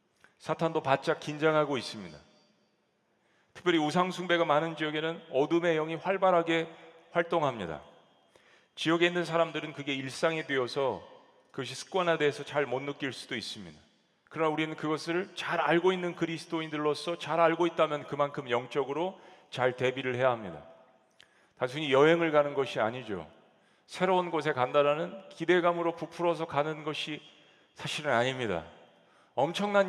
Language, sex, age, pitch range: Korean, male, 40-59, 135-170 Hz